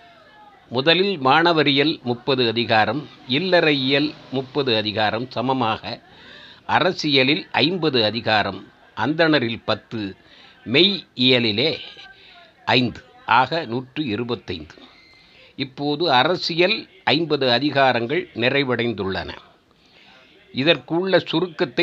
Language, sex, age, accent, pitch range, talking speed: Tamil, male, 50-69, native, 125-170 Hz, 70 wpm